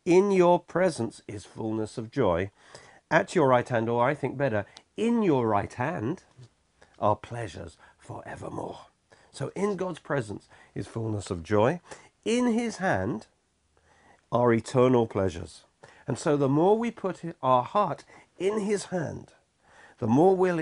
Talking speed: 145 wpm